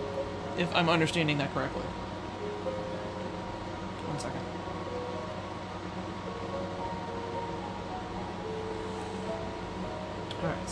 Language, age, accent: English, 20-39, American